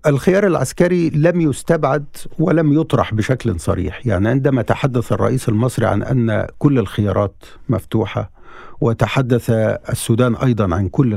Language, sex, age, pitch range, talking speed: Arabic, male, 50-69, 115-160 Hz, 125 wpm